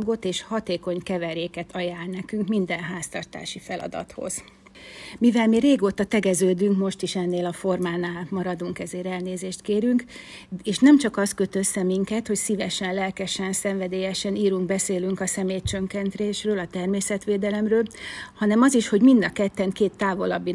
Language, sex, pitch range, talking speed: Hungarian, female, 185-210 Hz, 135 wpm